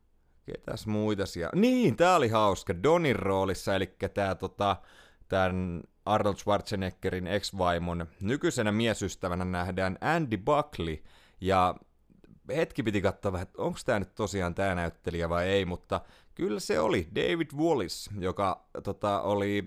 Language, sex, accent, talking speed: Finnish, male, native, 130 wpm